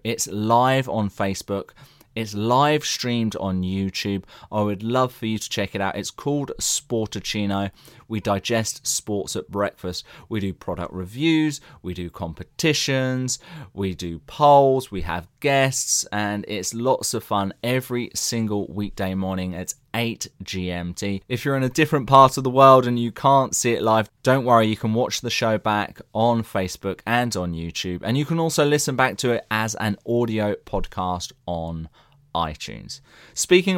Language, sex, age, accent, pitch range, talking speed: English, male, 20-39, British, 100-130 Hz, 165 wpm